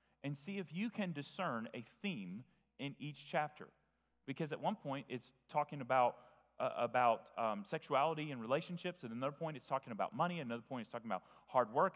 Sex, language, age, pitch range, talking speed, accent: male, English, 30-49, 115-175 Hz, 195 wpm, American